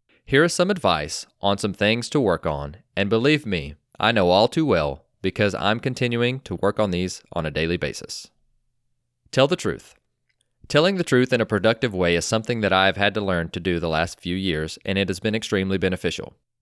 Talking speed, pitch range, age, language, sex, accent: 215 wpm, 90-120 Hz, 30-49, English, male, American